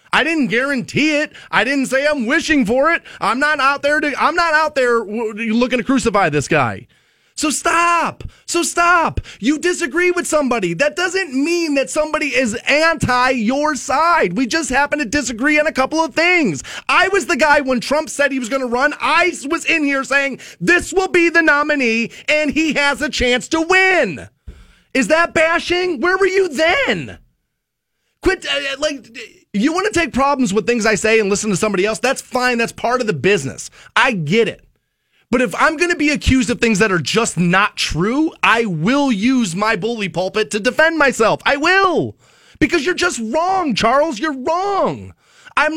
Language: English